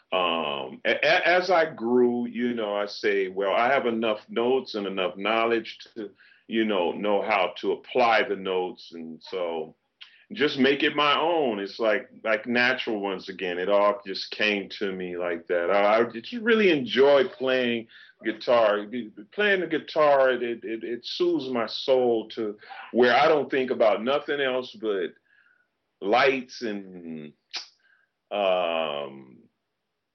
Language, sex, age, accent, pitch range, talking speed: English, male, 40-59, American, 105-140 Hz, 145 wpm